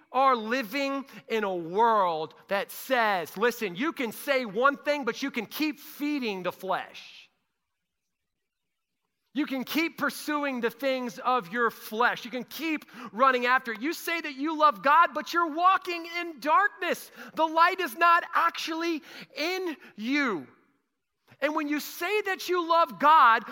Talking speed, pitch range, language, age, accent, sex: 155 wpm, 210-295 Hz, English, 40-59, American, male